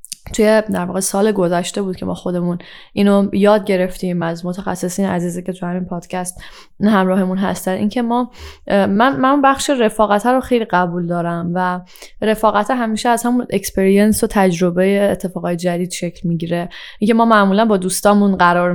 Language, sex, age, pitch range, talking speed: Persian, female, 10-29, 180-215 Hz, 155 wpm